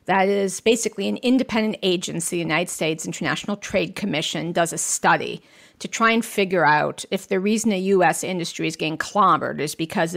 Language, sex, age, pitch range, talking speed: English, female, 50-69, 180-220 Hz, 185 wpm